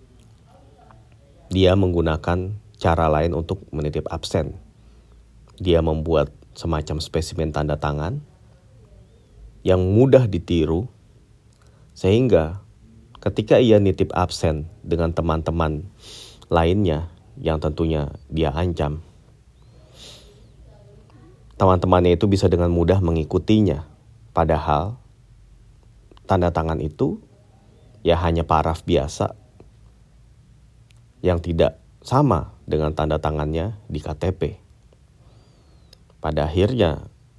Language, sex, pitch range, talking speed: Indonesian, male, 80-110 Hz, 85 wpm